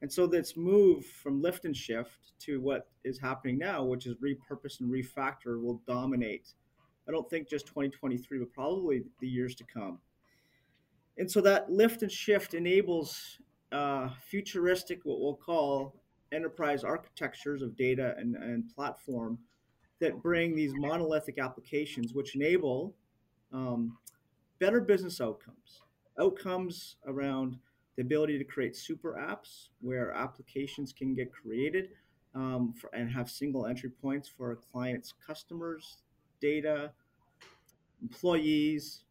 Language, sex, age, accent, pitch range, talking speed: English, male, 30-49, American, 125-155 Hz, 130 wpm